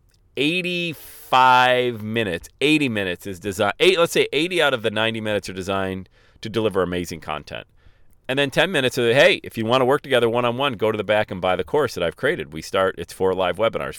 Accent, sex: American, male